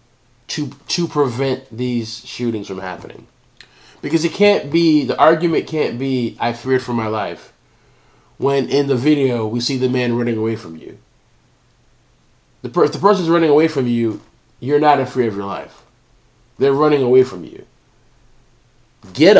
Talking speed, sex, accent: 165 wpm, male, American